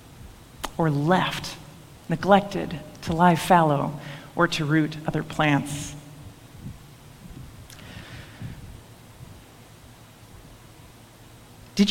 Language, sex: English, female